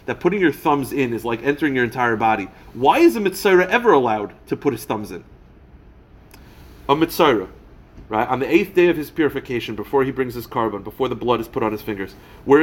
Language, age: English, 30-49